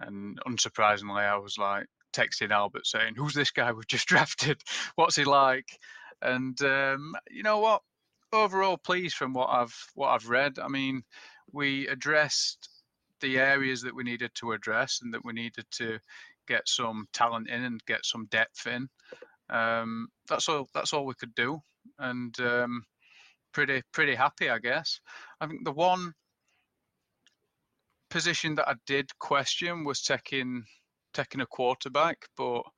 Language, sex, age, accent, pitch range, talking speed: English, male, 30-49, British, 115-140 Hz, 155 wpm